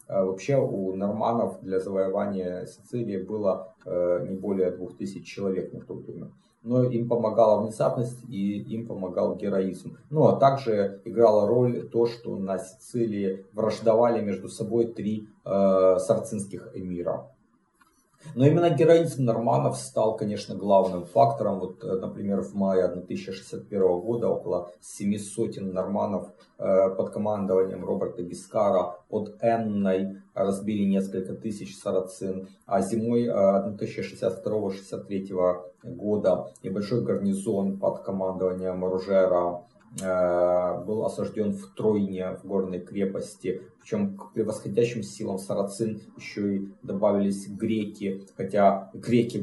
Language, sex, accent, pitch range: Russian, male, native, 95-110 Hz